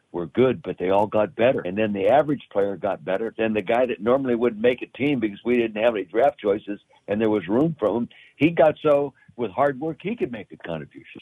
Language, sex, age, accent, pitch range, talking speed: English, male, 60-79, American, 100-125 Hz, 250 wpm